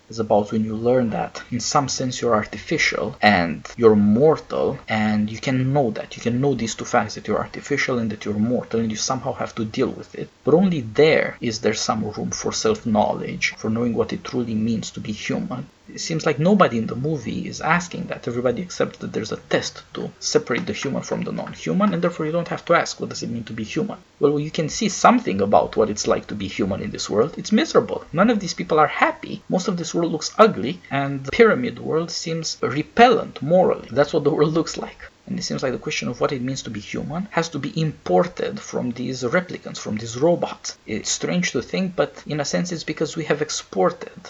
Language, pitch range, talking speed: English, 115-165 Hz, 235 wpm